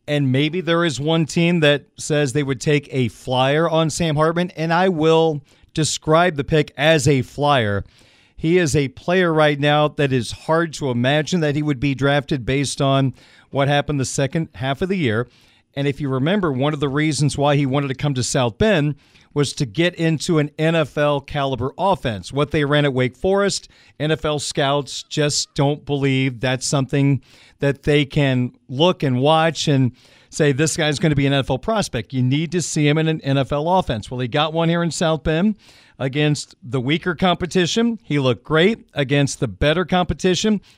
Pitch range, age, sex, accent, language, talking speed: 135-160 Hz, 40-59, male, American, English, 195 wpm